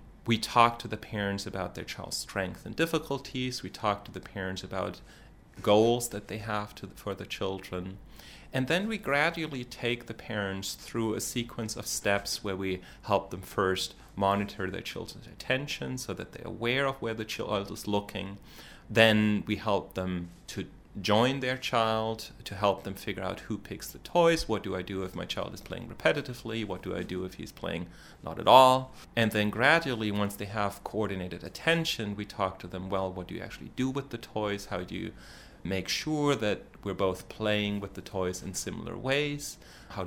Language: English